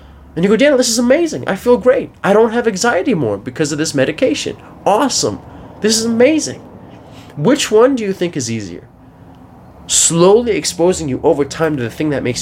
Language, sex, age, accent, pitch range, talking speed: English, male, 20-39, American, 120-185 Hz, 195 wpm